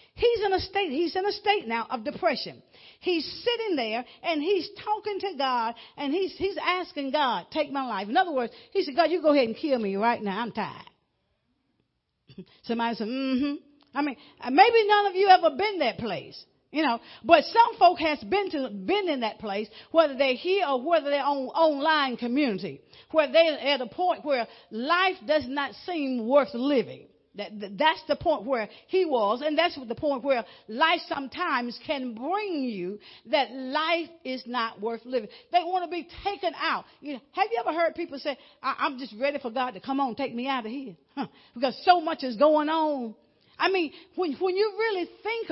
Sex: female